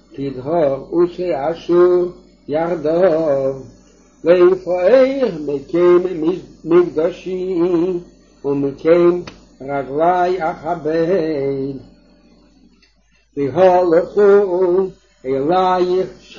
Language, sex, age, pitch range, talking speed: English, male, 60-79, 150-185 Hz, 50 wpm